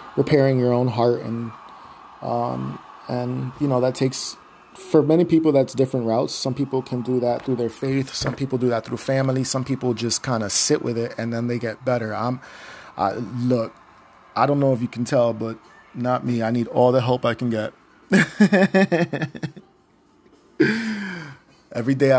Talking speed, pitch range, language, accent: 180 wpm, 115-130 Hz, English, American